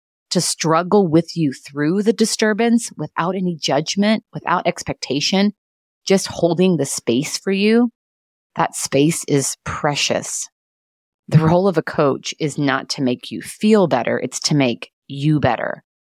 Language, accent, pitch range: English, American, 140-195 Hz